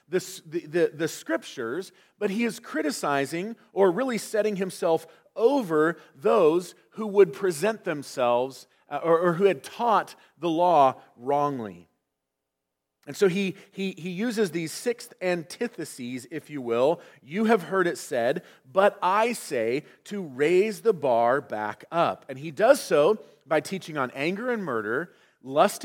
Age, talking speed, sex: 40-59, 145 wpm, male